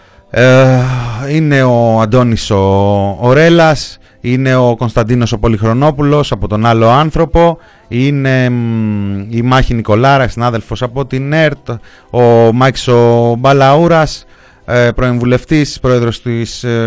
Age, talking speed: 30-49, 105 wpm